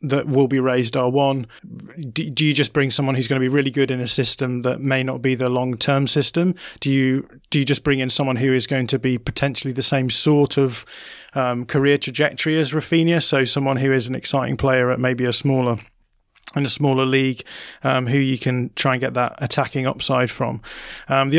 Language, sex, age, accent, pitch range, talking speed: English, male, 20-39, British, 125-140 Hz, 220 wpm